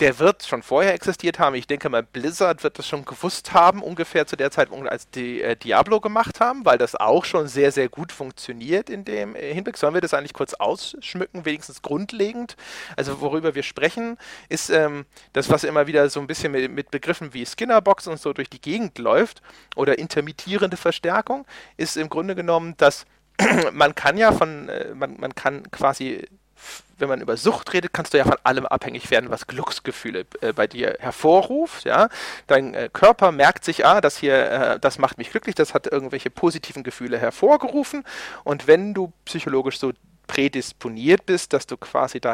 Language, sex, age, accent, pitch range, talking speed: German, male, 40-59, German, 140-190 Hz, 190 wpm